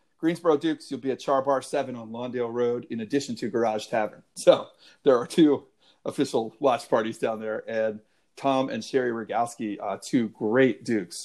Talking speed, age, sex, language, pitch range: 175 wpm, 40-59, male, English, 110-130 Hz